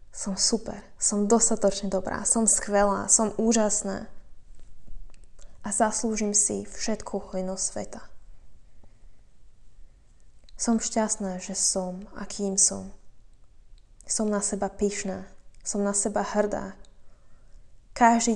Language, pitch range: Slovak, 180-210 Hz